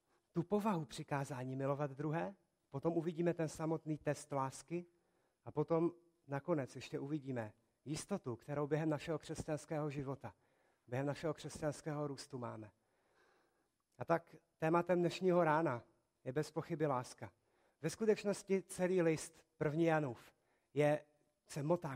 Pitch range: 140-180 Hz